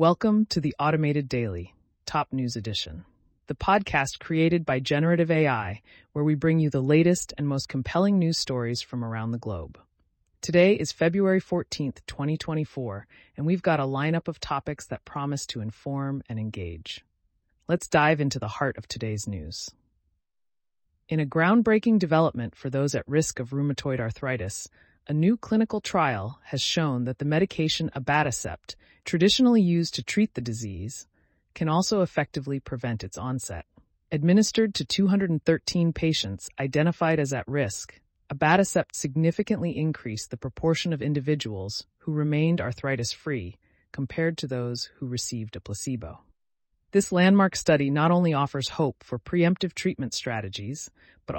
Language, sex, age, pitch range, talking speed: English, female, 30-49, 115-165 Hz, 145 wpm